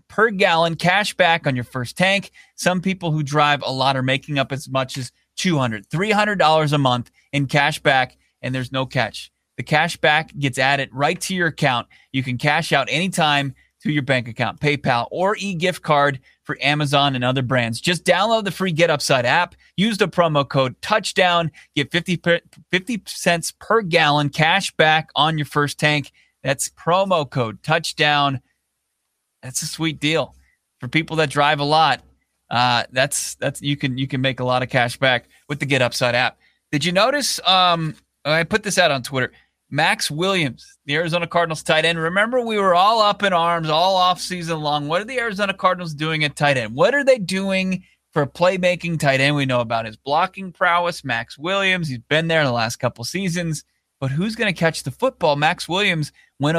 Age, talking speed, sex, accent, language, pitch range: 30-49, 195 wpm, male, American, English, 135-180 Hz